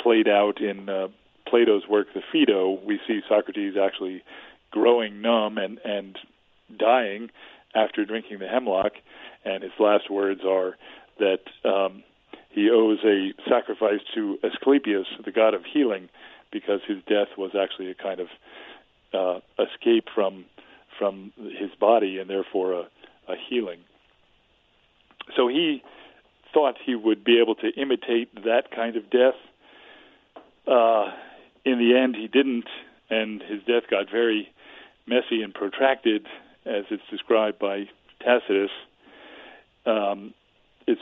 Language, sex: English, male